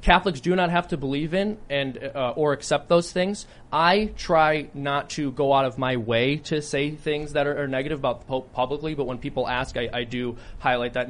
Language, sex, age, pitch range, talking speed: English, male, 20-39, 125-165 Hz, 225 wpm